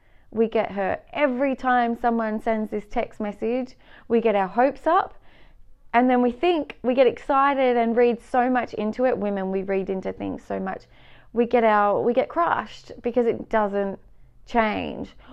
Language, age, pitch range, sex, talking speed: English, 30-49, 205-245 Hz, female, 175 wpm